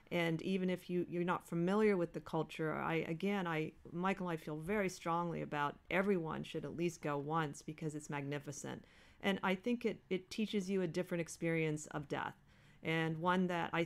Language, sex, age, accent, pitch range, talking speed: English, female, 40-59, American, 155-185 Hz, 195 wpm